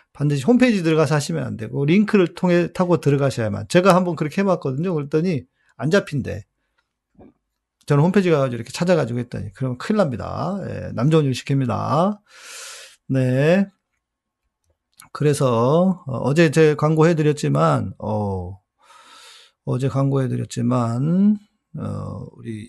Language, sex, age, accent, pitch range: Korean, male, 40-59, native, 125-180 Hz